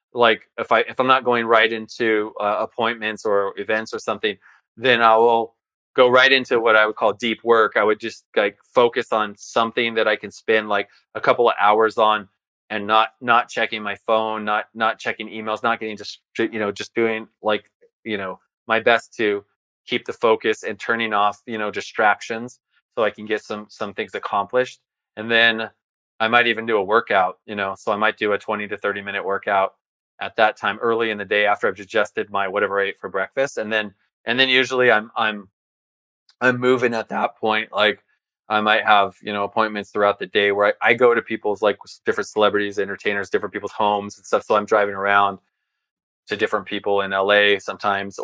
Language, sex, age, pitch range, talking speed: English, male, 20-39, 100-115 Hz, 210 wpm